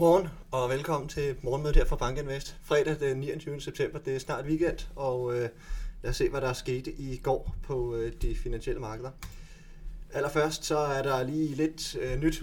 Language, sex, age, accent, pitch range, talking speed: Danish, male, 30-49, native, 115-155 Hz, 180 wpm